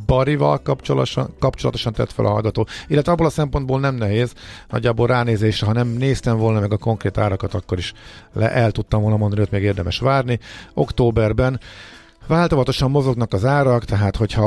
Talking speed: 170 wpm